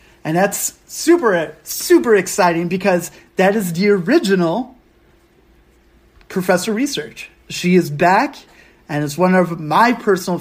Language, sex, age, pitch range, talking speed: English, male, 30-49, 160-210 Hz, 120 wpm